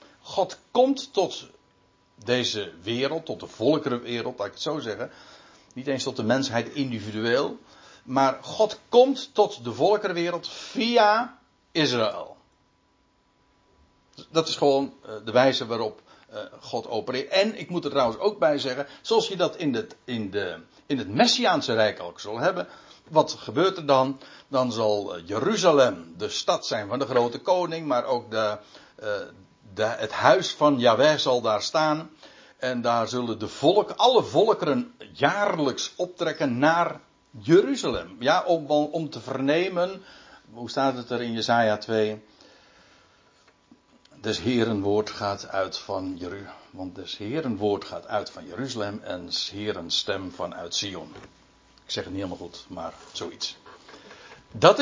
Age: 60-79